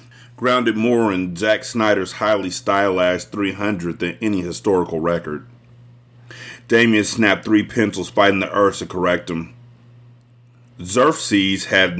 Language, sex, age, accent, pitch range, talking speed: English, male, 30-49, American, 90-120 Hz, 120 wpm